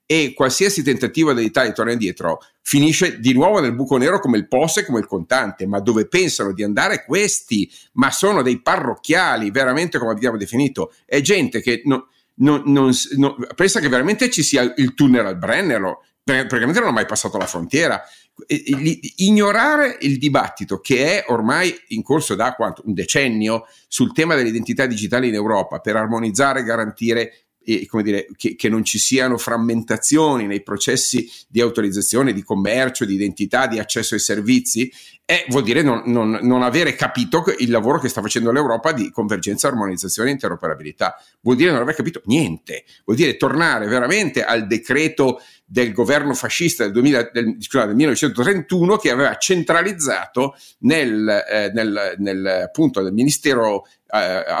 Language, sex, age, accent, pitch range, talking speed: Italian, male, 50-69, native, 115-145 Hz, 165 wpm